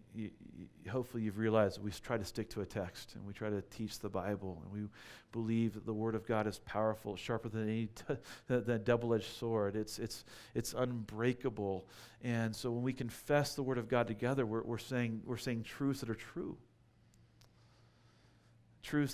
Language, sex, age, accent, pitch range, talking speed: English, male, 40-59, American, 105-120 Hz, 180 wpm